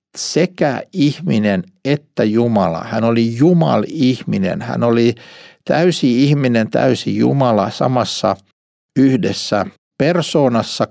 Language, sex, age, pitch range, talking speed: Finnish, male, 60-79, 105-145 Hz, 90 wpm